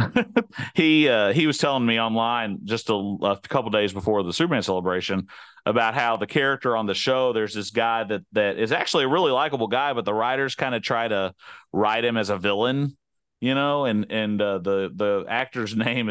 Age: 30-49